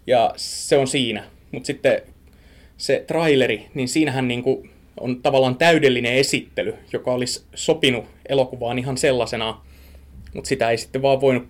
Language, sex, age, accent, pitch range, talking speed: Finnish, male, 30-49, native, 120-140 Hz, 140 wpm